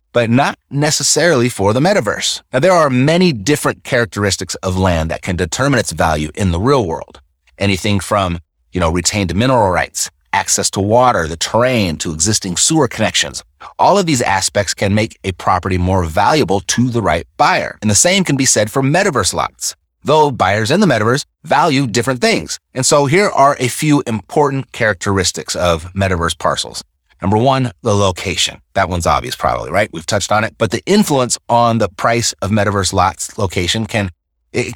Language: English